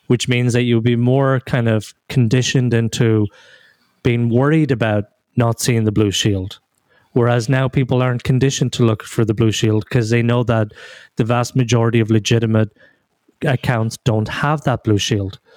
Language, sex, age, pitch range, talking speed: English, male, 30-49, 115-135 Hz, 170 wpm